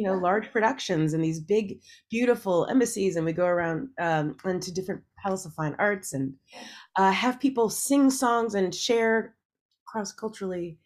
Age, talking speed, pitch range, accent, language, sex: 30-49, 160 wpm, 165-220 Hz, American, English, female